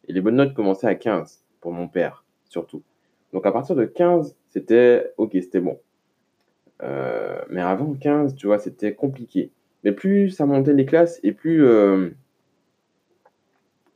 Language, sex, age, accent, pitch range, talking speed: French, male, 20-39, French, 95-135 Hz, 155 wpm